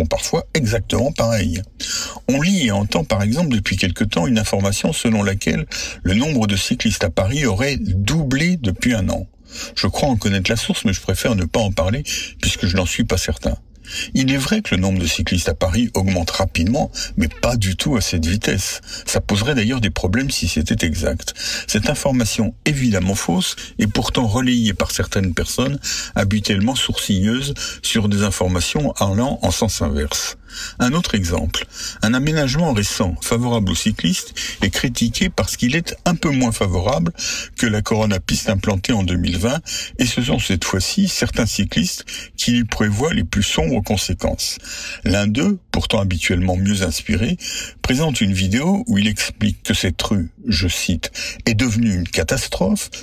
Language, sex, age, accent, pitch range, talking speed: French, male, 60-79, French, 95-120 Hz, 175 wpm